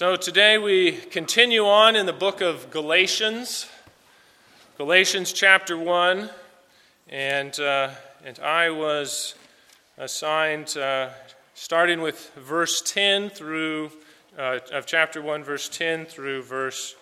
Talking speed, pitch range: 115 wpm, 145-185 Hz